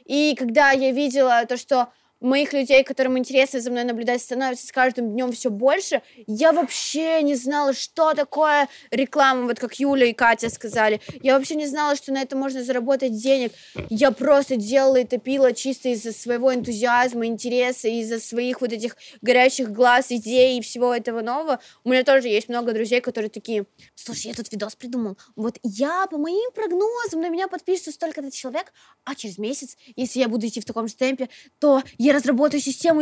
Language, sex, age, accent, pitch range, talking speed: Russian, female, 20-39, native, 225-275 Hz, 185 wpm